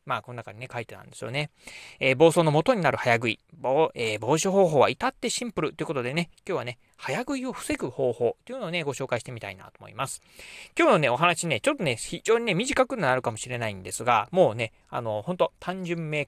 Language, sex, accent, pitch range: Japanese, male, native, 120-175 Hz